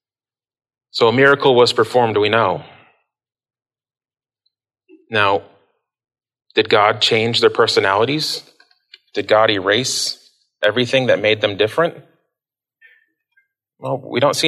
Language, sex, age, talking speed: English, male, 30-49, 105 wpm